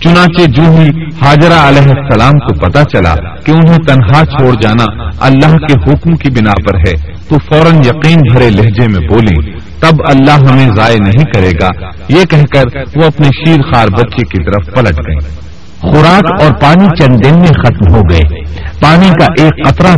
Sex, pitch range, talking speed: male, 95-150 Hz, 170 wpm